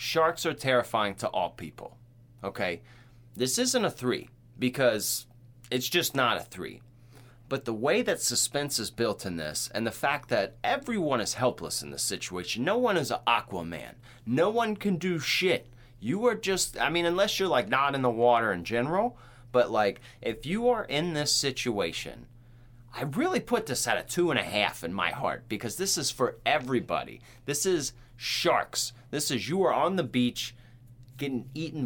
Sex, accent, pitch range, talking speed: male, American, 120-145 Hz, 185 wpm